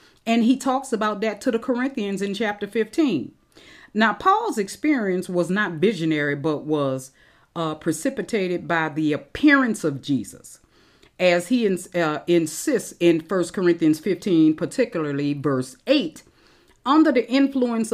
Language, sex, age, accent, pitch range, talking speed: English, female, 40-59, American, 165-230 Hz, 135 wpm